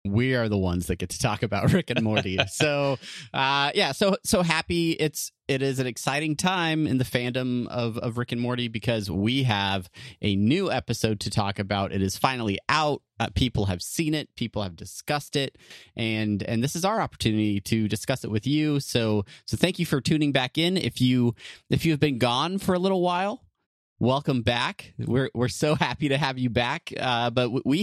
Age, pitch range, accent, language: 30-49, 110-145 Hz, American, English